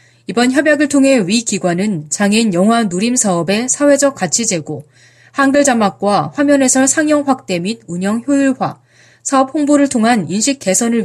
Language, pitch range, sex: Korean, 185-270 Hz, female